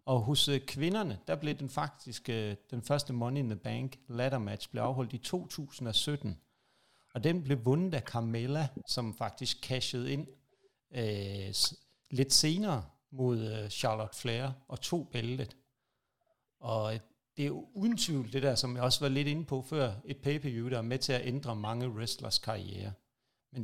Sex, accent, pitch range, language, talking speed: male, native, 115-145 Hz, Danish, 170 wpm